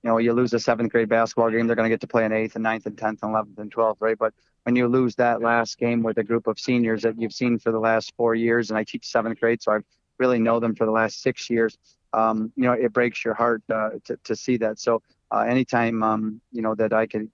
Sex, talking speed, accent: male, 285 wpm, American